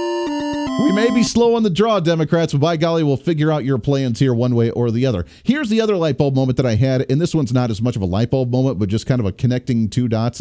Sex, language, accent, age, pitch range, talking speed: male, English, American, 40-59, 115-160 Hz, 290 wpm